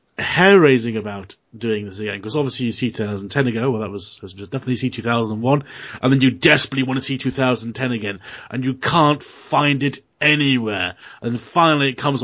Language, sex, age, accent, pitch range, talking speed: English, male, 30-49, British, 115-145 Hz, 245 wpm